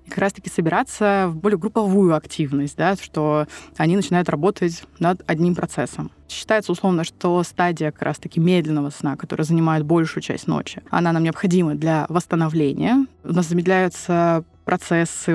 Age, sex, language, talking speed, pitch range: 20-39, female, Russian, 150 wpm, 160-195 Hz